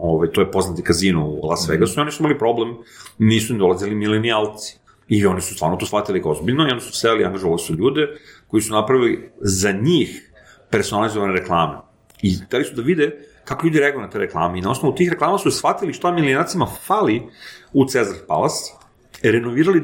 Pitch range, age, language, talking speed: 100-155 Hz, 40-59, Croatian, 195 wpm